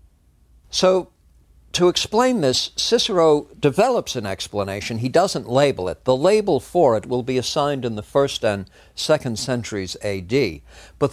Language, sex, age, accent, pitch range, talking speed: English, male, 60-79, American, 100-160 Hz, 145 wpm